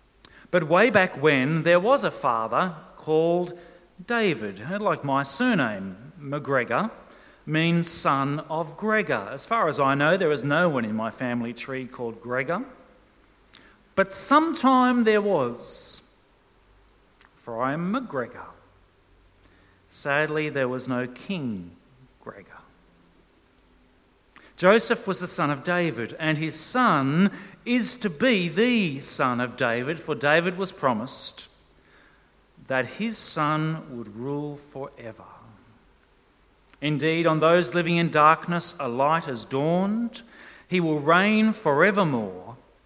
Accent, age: Australian, 40-59